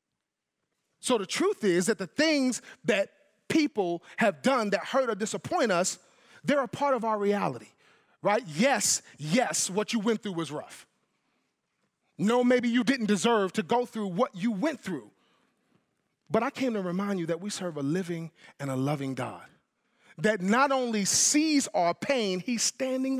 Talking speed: 170 wpm